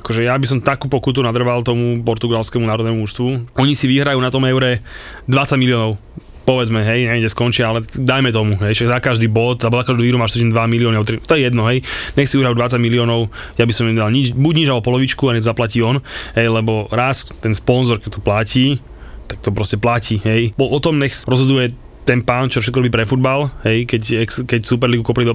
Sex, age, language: male, 20-39, Slovak